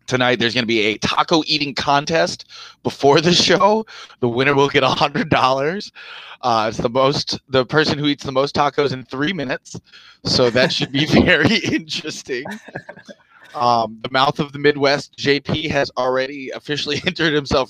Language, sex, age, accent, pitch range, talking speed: English, male, 20-39, American, 130-155 Hz, 175 wpm